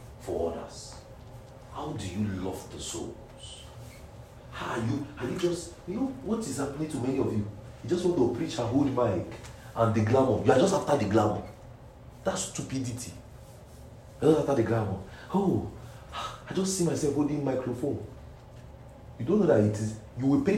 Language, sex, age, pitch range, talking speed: English, male, 40-59, 115-145 Hz, 185 wpm